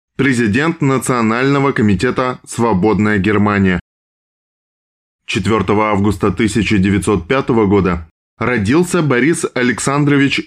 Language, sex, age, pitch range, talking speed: Russian, male, 20-39, 100-130 Hz, 70 wpm